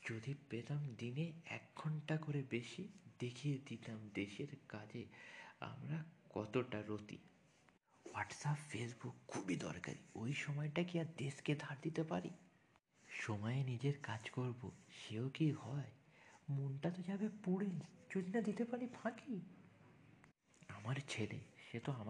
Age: 50-69